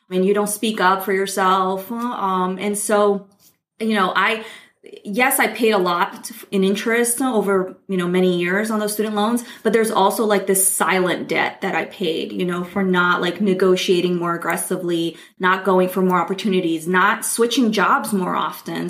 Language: English